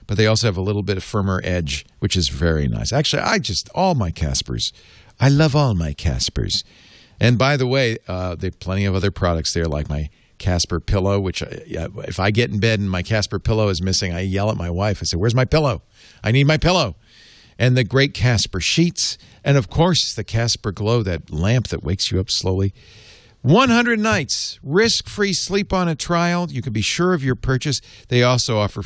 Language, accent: English, American